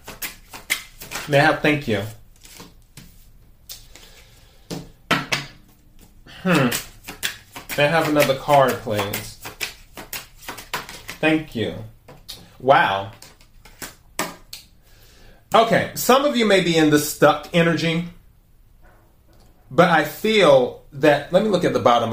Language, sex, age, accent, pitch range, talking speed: English, male, 30-49, American, 135-170 Hz, 90 wpm